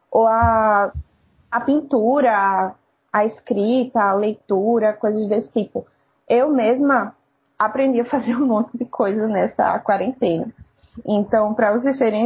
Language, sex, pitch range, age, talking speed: Portuguese, female, 215-250 Hz, 20-39, 130 wpm